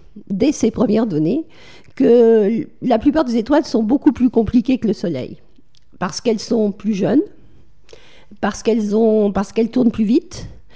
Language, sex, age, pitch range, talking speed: French, female, 50-69, 205-270 Hz, 160 wpm